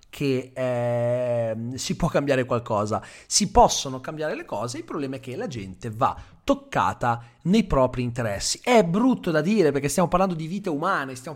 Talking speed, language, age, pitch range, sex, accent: 175 wpm, Italian, 30-49, 130-195 Hz, male, native